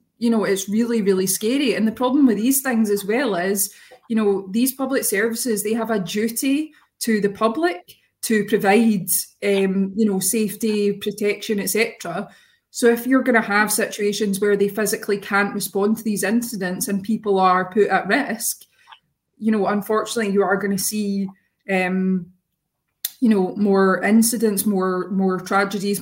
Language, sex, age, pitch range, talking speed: English, female, 20-39, 195-225 Hz, 165 wpm